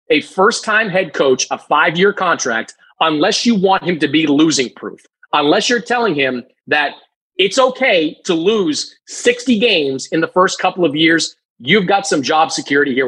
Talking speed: 185 wpm